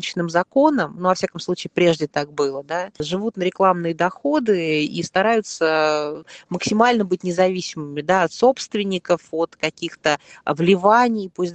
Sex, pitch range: female, 155-190 Hz